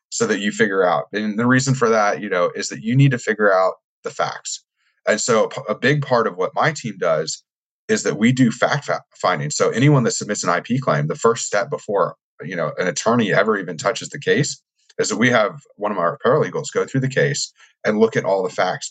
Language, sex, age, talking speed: English, male, 30-49, 240 wpm